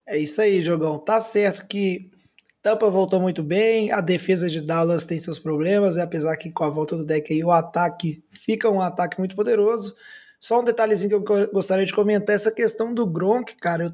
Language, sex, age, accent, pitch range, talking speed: Portuguese, male, 20-39, Brazilian, 190-240 Hz, 200 wpm